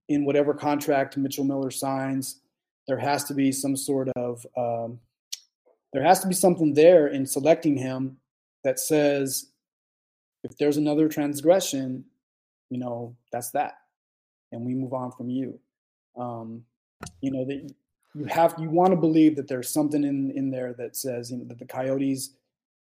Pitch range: 125-150 Hz